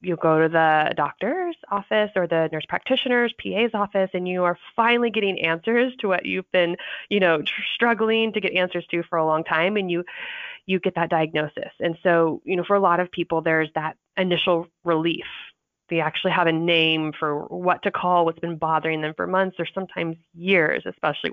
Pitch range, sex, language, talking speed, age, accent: 165-205 Hz, female, English, 200 wpm, 20-39, American